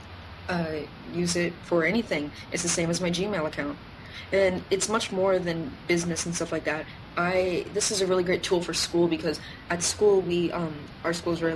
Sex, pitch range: female, 160-180 Hz